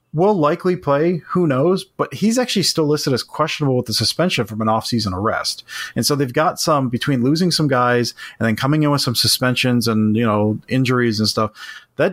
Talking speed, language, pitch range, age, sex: 210 wpm, English, 115-150 Hz, 30-49, male